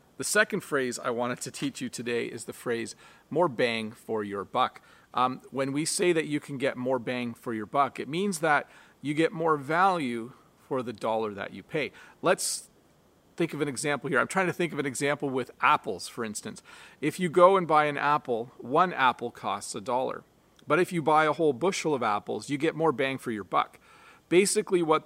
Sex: male